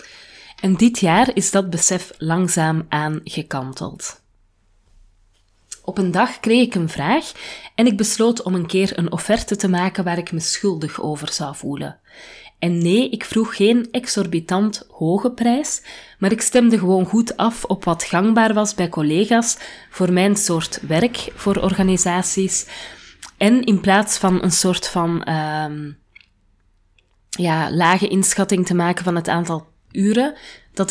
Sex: female